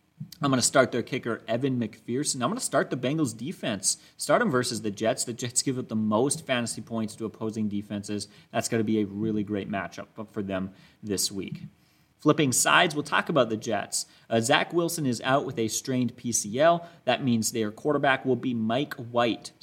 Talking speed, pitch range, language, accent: 205 wpm, 110-135 Hz, English, American